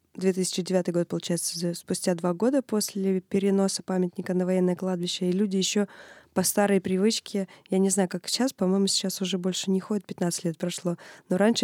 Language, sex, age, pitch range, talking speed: English, female, 20-39, 180-195 Hz, 175 wpm